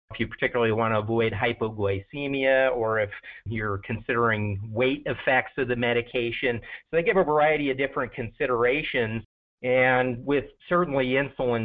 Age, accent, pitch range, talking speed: 40-59, American, 110-130 Hz, 145 wpm